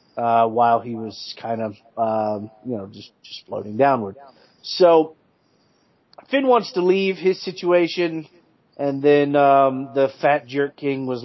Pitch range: 125-150 Hz